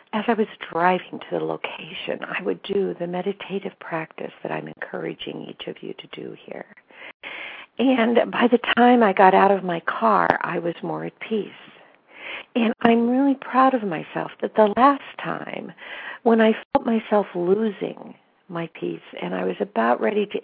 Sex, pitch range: female, 175-225 Hz